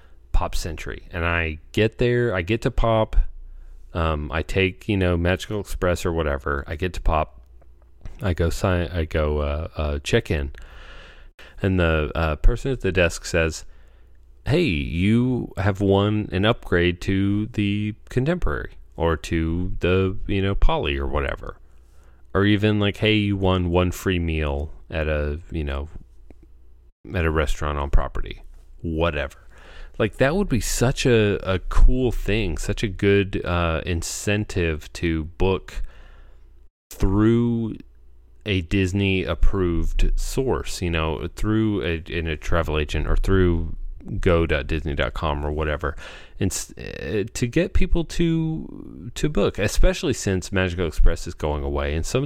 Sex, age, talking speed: male, 30-49, 145 wpm